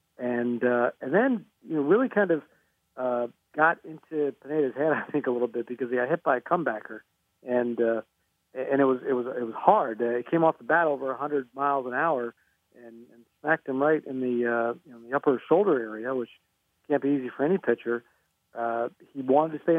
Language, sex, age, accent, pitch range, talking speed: English, male, 50-69, American, 120-155 Hz, 220 wpm